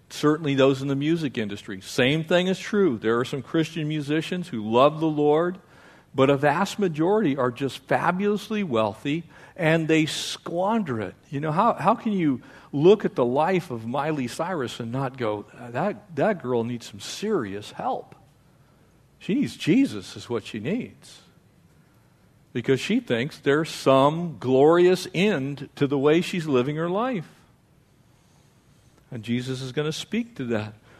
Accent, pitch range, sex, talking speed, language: American, 125-175 Hz, male, 160 wpm, English